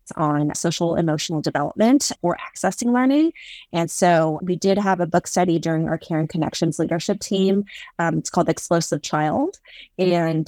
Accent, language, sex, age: American, English, female, 30-49